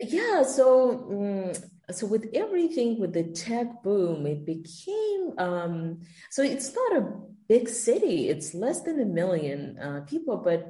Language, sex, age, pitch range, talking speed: English, female, 30-49, 150-205 Hz, 145 wpm